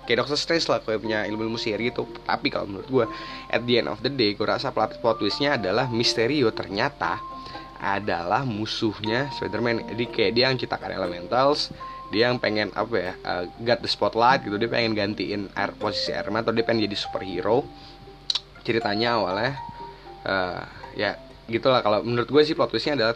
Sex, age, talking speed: male, 10-29, 180 wpm